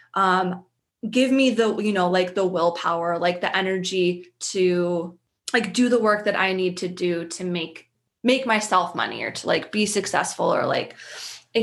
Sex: female